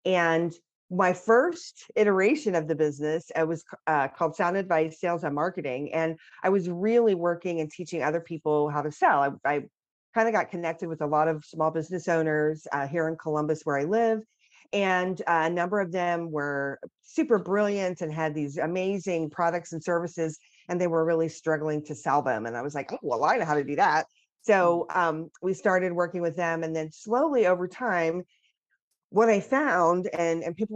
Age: 40-59